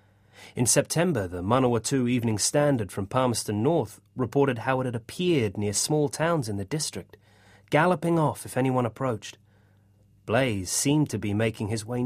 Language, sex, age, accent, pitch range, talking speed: English, male, 30-49, British, 100-130 Hz, 160 wpm